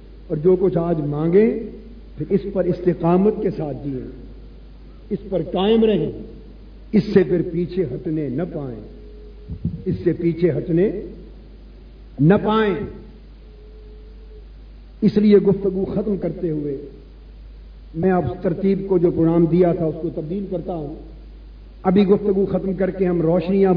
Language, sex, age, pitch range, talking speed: Urdu, male, 50-69, 155-195 Hz, 150 wpm